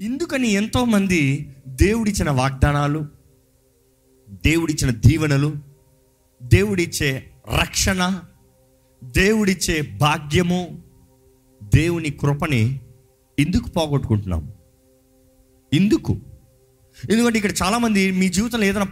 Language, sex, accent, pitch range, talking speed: Telugu, male, native, 130-195 Hz, 65 wpm